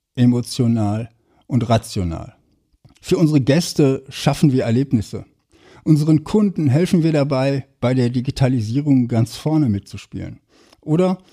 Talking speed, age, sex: 110 wpm, 60-79, male